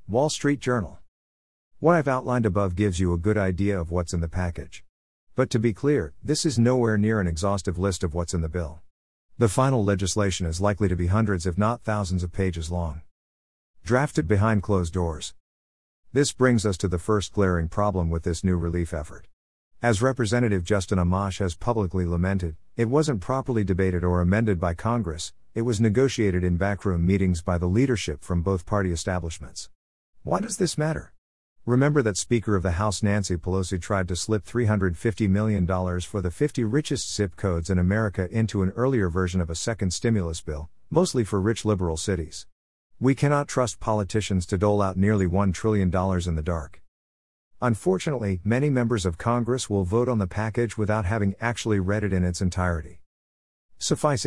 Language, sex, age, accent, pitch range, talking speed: English, male, 50-69, American, 90-115 Hz, 180 wpm